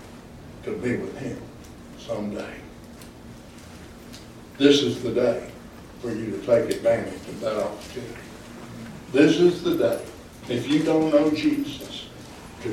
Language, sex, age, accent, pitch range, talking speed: English, male, 60-79, American, 120-155 Hz, 125 wpm